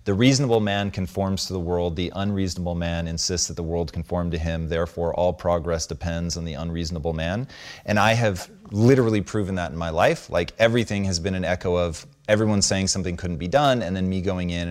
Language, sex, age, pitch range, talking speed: English, male, 30-49, 85-105 Hz, 210 wpm